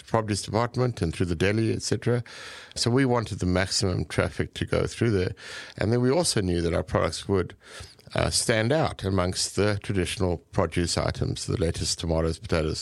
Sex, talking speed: male, 175 wpm